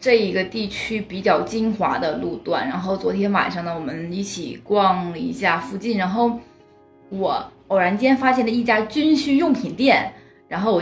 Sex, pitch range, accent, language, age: female, 180-230 Hz, native, Chinese, 20-39